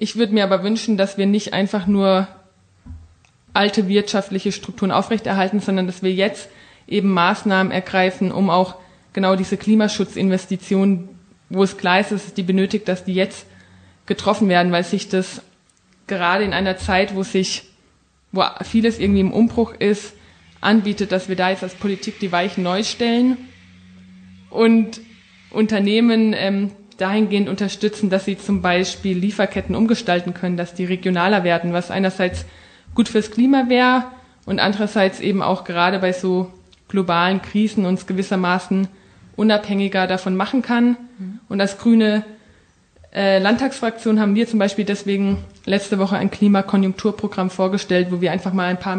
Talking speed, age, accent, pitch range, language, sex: 150 wpm, 20-39, German, 185-205 Hz, German, female